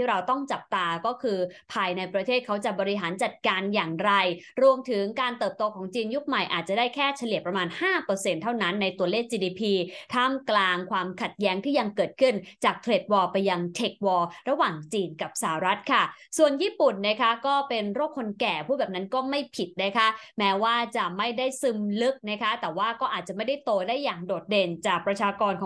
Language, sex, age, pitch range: English, female, 20-39, 190-255 Hz